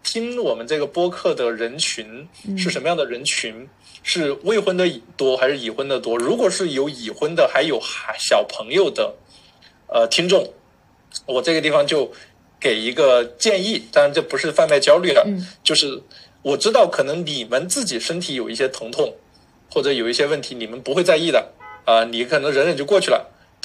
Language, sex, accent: Chinese, male, native